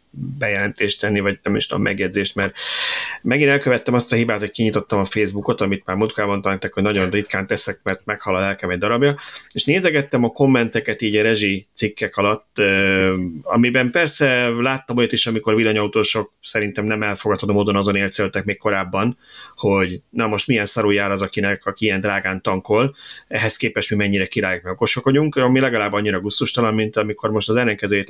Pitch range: 100-120 Hz